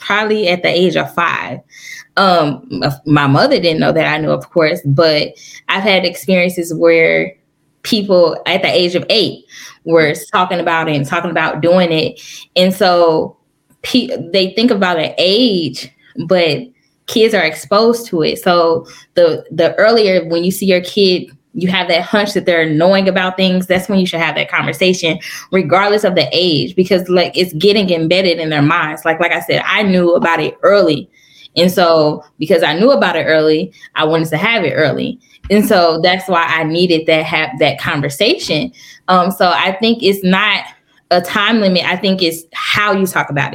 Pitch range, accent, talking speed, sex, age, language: 160-190 Hz, American, 185 wpm, female, 10-29, English